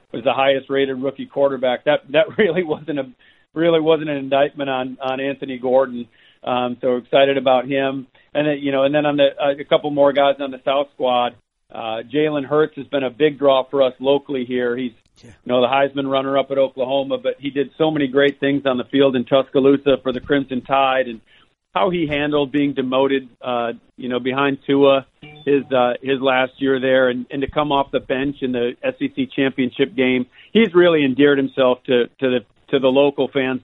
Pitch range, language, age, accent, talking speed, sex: 130-145 Hz, English, 40-59, American, 205 wpm, male